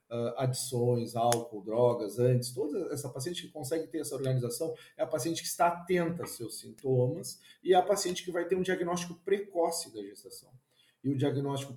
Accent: Brazilian